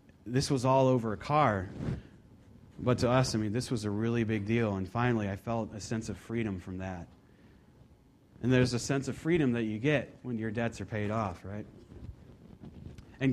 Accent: American